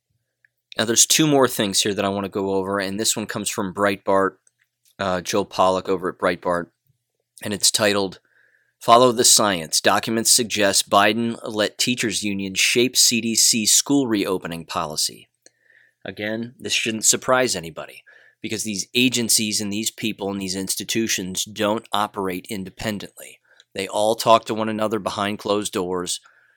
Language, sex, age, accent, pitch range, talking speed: English, male, 30-49, American, 100-115 Hz, 150 wpm